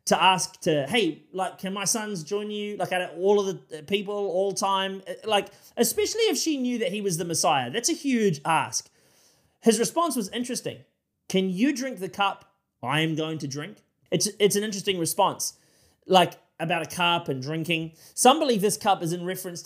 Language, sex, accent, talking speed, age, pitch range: English, male, Australian, 195 wpm, 30-49, 150-195 Hz